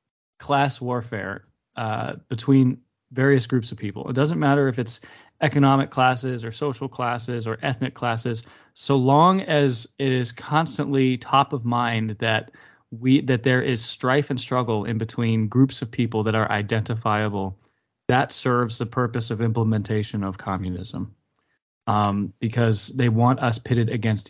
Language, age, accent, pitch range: English, 20-39, American, 115-135 Hz